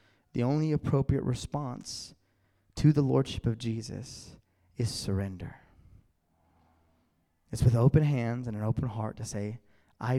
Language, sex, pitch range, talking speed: English, male, 110-150 Hz, 130 wpm